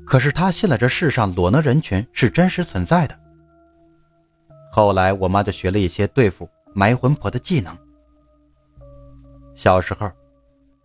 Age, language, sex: 30-49, Chinese, male